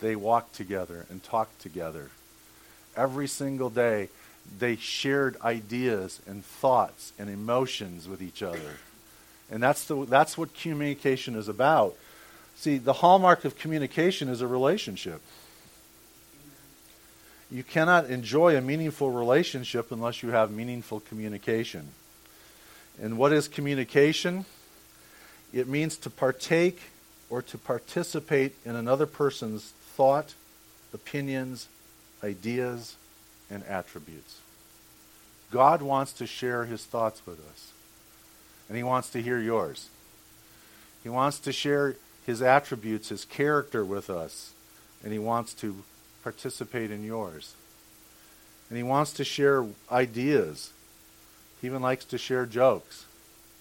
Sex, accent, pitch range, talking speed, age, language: male, American, 110-140 Hz, 120 wpm, 50-69, English